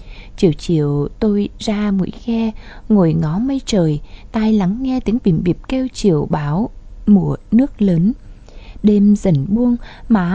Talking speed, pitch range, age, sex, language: 150 wpm, 180-250 Hz, 20-39, female, Vietnamese